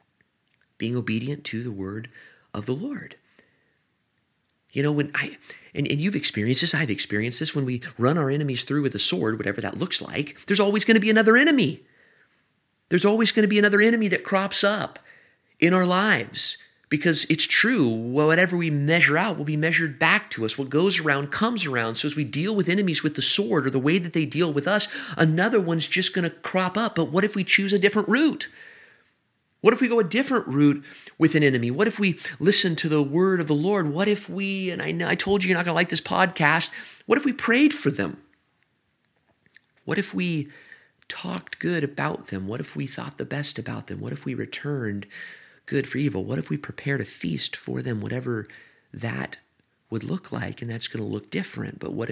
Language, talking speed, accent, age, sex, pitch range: English, 210 wpm, American, 30-49, male, 135-200 Hz